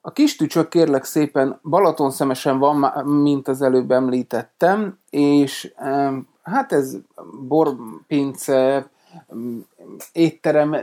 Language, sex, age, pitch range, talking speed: Hungarian, male, 30-49, 130-155 Hz, 95 wpm